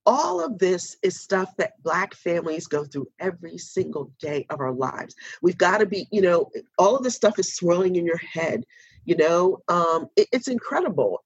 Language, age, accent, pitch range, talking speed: English, 40-59, American, 145-185 Hz, 190 wpm